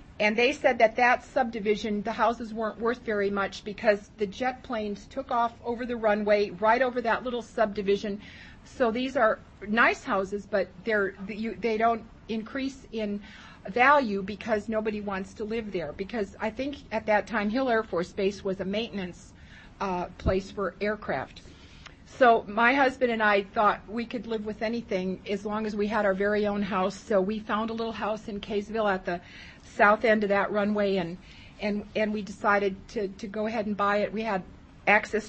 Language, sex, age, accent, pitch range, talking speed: English, female, 40-59, American, 200-230 Hz, 185 wpm